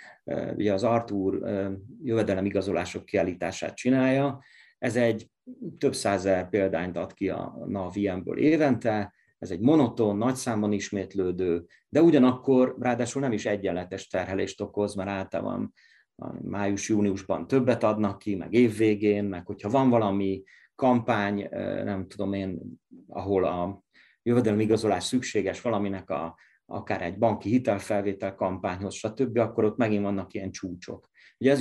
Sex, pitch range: male, 100-130 Hz